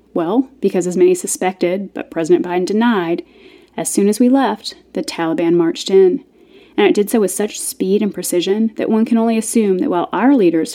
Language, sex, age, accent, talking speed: English, female, 30-49, American, 200 wpm